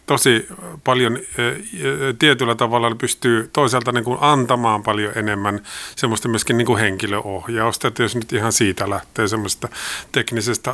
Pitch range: 115-130 Hz